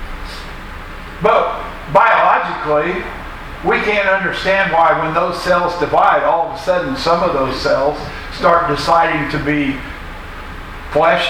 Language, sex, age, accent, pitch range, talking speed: English, male, 50-69, American, 140-235 Hz, 120 wpm